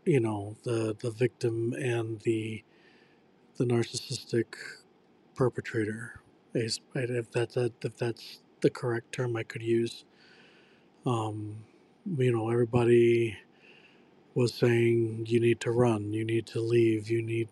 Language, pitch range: English, 115-125 Hz